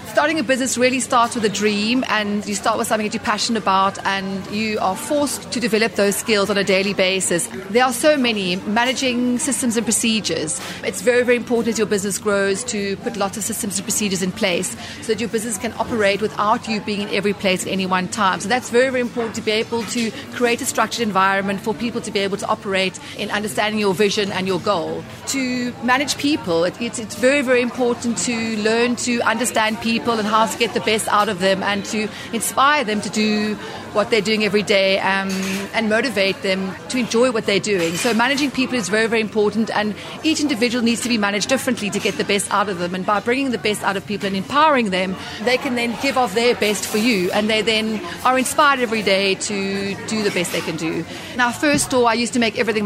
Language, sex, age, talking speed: English, female, 30-49, 230 wpm